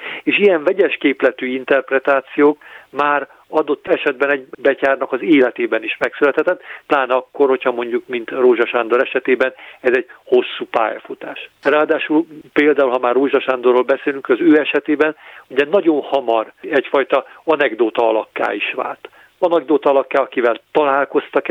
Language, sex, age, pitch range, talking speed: Hungarian, male, 50-69, 125-160 Hz, 135 wpm